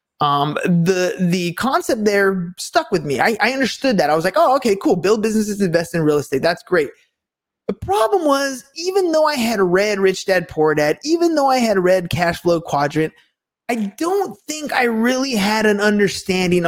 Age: 20-39